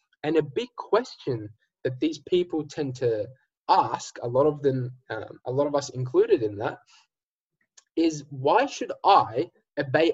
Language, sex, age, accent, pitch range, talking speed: English, male, 10-29, Australian, 130-185 Hz, 160 wpm